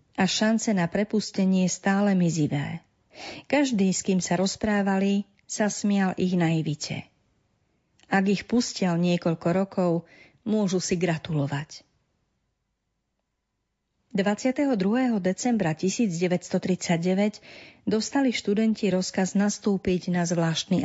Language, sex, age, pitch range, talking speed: Slovak, female, 40-59, 170-210 Hz, 90 wpm